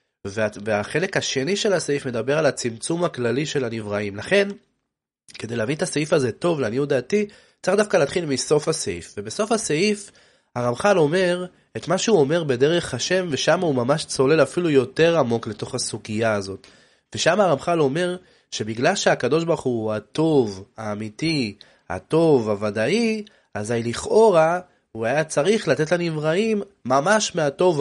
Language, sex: Hebrew, male